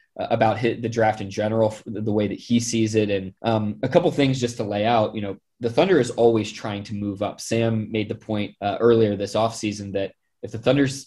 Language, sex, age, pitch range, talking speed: English, male, 20-39, 105-120 Hz, 240 wpm